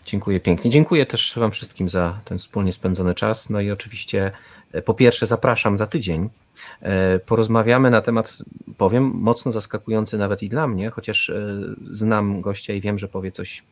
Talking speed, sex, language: 160 wpm, male, Polish